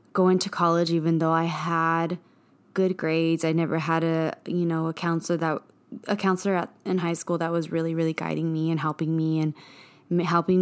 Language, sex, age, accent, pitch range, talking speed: English, female, 20-39, American, 155-175 Hz, 190 wpm